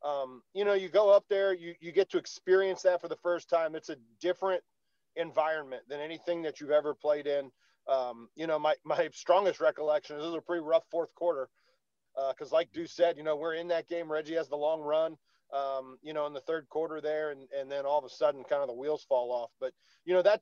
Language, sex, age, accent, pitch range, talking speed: English, male, 40-59, American, 145-175 Hz, 245 wpm